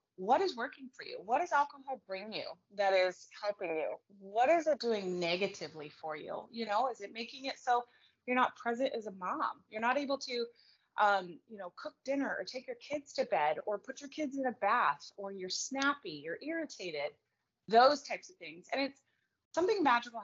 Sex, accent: female, American